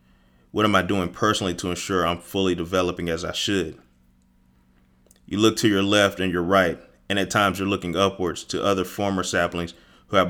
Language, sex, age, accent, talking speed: English, male, 30-49, American, 190 wpm